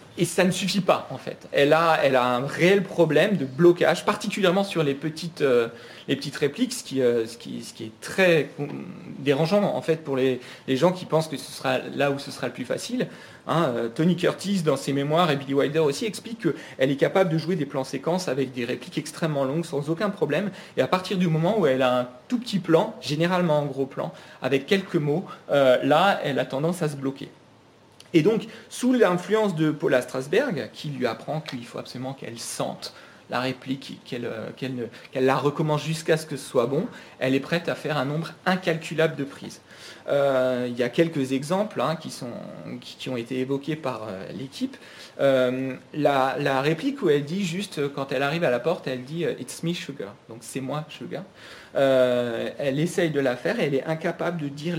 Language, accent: French, French